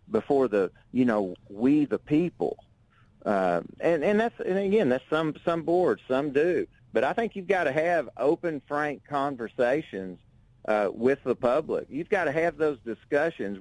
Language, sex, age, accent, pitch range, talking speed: English, male, 40-59, American, 115-145 Hz, 170 wpm